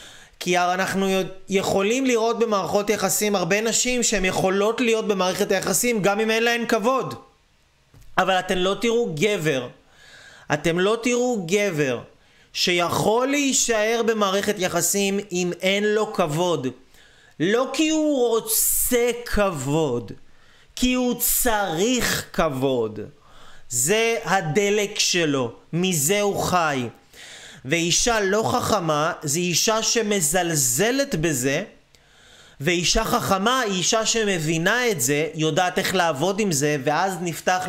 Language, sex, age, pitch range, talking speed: Hebrew, male, 30-49, 170-215 Hz, 115 wpm